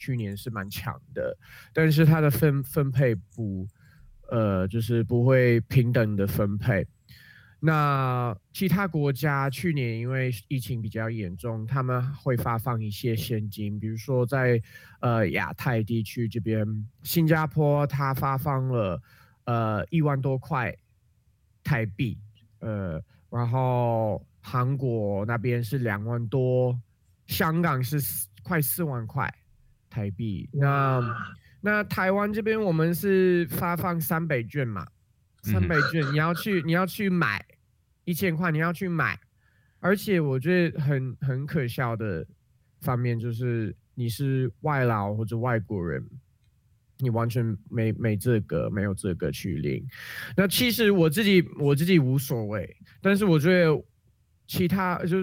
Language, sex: Chinese, male